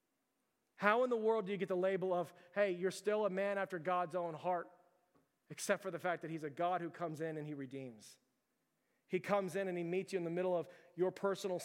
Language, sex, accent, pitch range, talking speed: English, male, American, 170-190 Hz, 235 wpm